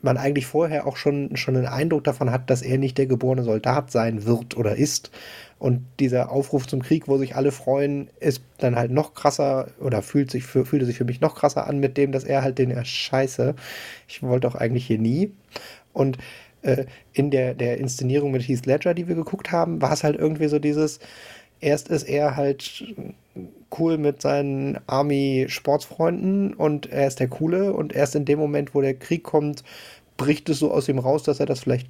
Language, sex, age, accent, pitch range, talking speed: German, male, 30-49, German, 130-150 Hz, 210 wpm